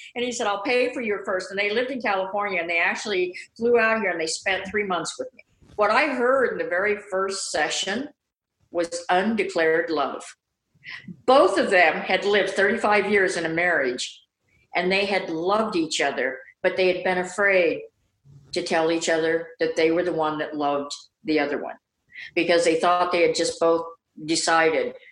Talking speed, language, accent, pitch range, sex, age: 190 wpm, English, American, 160-200 Hz, female, 50-69